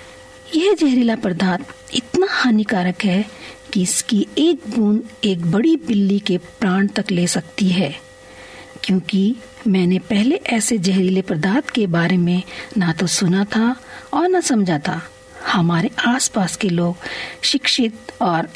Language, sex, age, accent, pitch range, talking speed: Hindi, female, 50-69, native, 185-250 Hz, 135 wpm